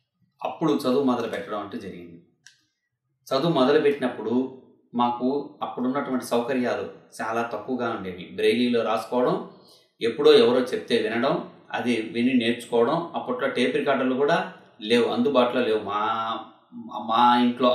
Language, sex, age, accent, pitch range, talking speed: Telugu, male, 30-49, native, 115-135 Hz, 110 wpm